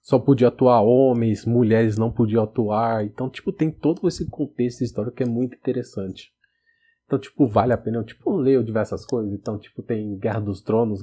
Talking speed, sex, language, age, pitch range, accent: 195 wpm, male, Portuguese, 20-39, 105-135 Hz, Brazilian